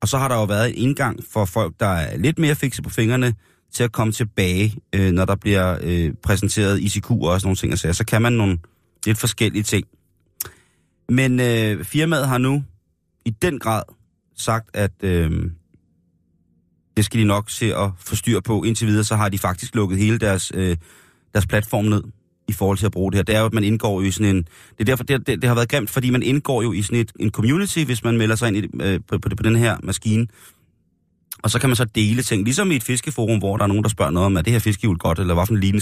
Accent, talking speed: native, 240 wpm